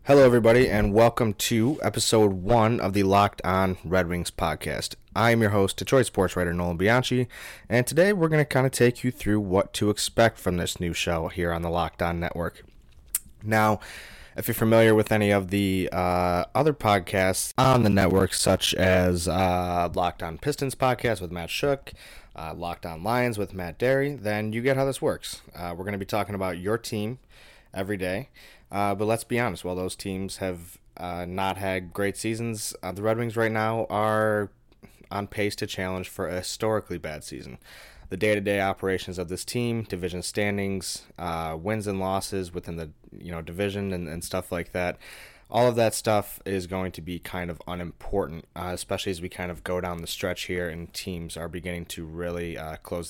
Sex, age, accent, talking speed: male, 20-39, American, 200 wpm